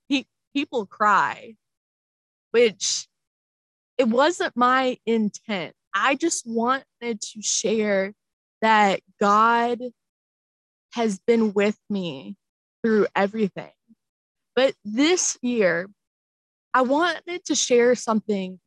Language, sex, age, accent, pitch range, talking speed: English, female, 20-39, American, 205-255 Hz, 90 wpm